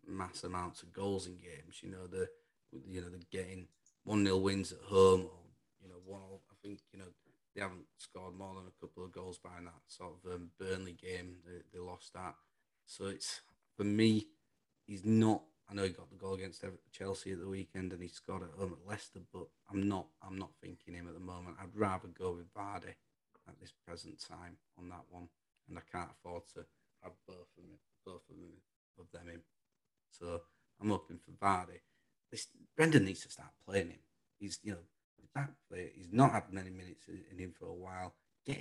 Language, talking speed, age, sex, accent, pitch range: English, 215 wpm, 30-49, male, British, 90-100 Hz